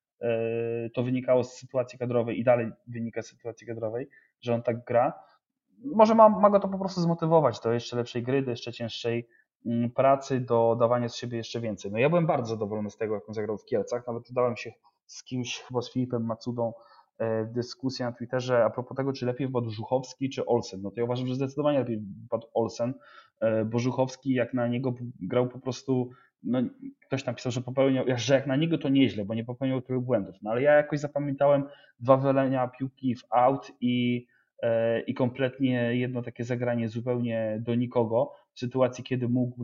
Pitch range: 115-130 Hz